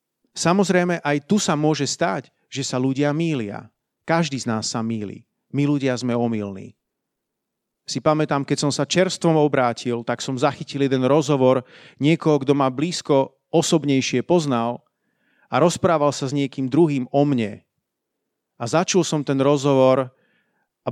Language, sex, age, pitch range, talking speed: Slovak, male, 40-59, 130-165 Hz, 145 wpm